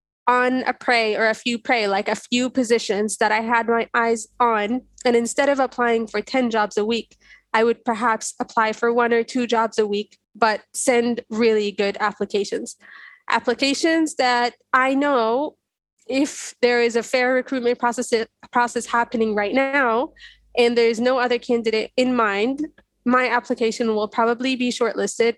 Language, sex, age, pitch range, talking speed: English, female, 20-39, 215-245 Hz, 165 wpm